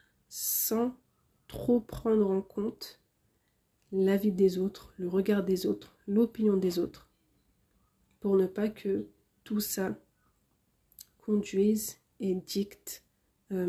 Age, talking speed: 40-59, 110 wpm